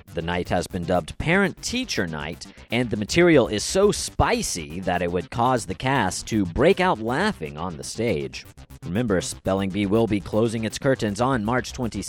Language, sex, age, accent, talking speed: English, male, 40-59, American, 185 wpm